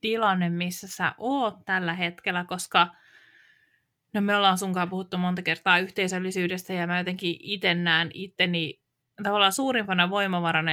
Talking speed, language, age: 130 wpm, Finnish, 20-39